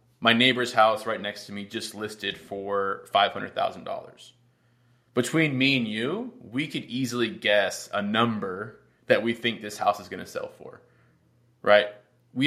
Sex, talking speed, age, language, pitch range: male, 160 wpm, 20-39, English, 110-125 Hz